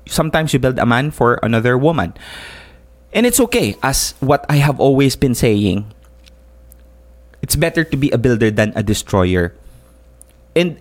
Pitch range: 105-165 Hz